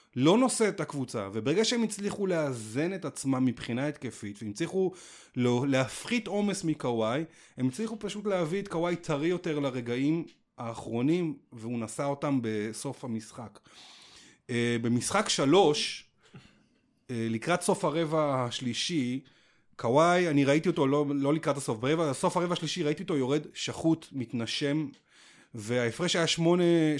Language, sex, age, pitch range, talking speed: Hebrew, male, 30-49, 125-165 Hz, 130 wpm